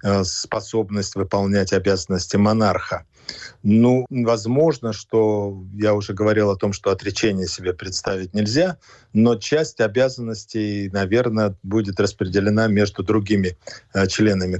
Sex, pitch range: male, 95-115 Hz